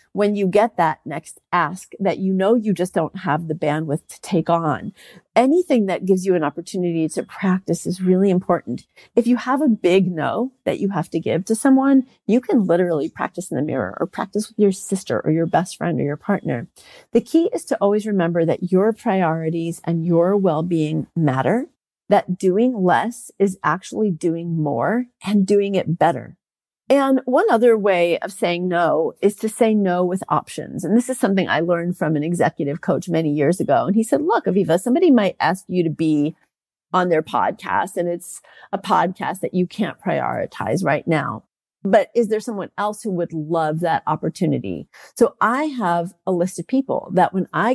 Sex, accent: female, American